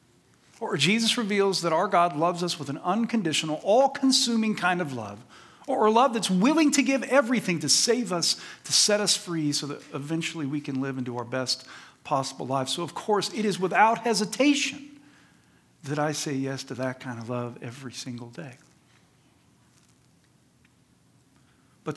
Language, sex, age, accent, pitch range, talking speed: English, male, 50-69, American, 135-195 Hz, 170 wpm